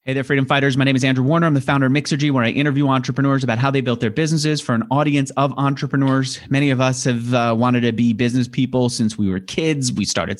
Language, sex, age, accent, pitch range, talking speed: English, male, 30-49, American, 115-160 Hz, 260 wpm